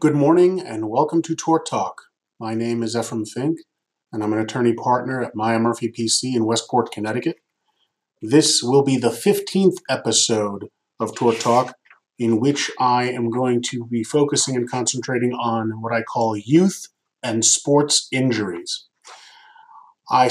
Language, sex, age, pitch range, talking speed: English, male, 30-49, 115-145 Hz, 155 wpm